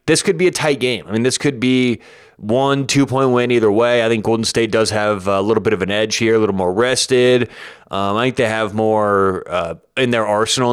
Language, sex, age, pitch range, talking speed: English, male, 30-49, 105-125 Hz, 240 wpm